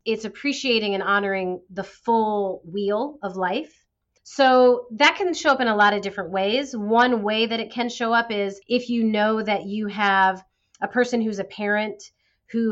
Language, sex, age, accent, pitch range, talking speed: English, female, 30-49, American, 195-235 Hz, 190 wpm